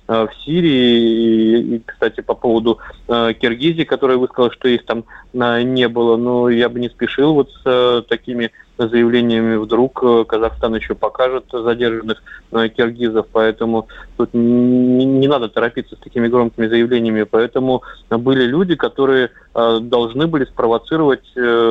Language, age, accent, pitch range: Russian, 20-39, native, 115-130 Hz